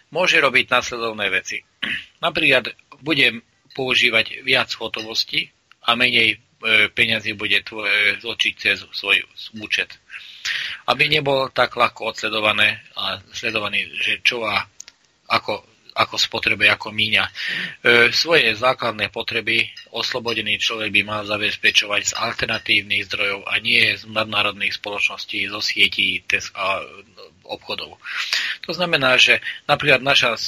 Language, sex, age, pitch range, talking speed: Slovak, male, 30-49, 105-120 Hz, 120 wpm